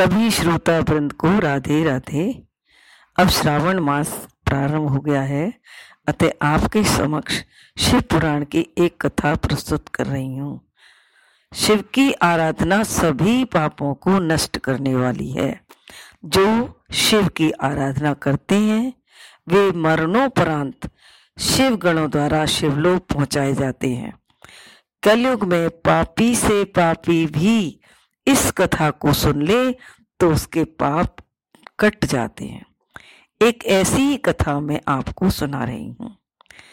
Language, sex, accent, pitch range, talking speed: Hindi, female, native, 150-205 Hz, 125 wpm